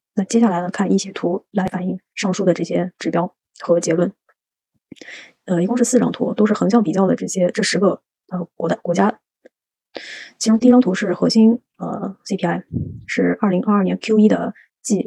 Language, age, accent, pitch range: Chinese, 20-39, native, 180-215 Hz